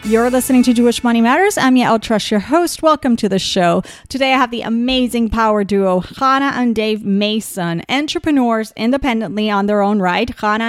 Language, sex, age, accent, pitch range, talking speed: English, female, 40-59, American, 200-265 Hz, 185 wpm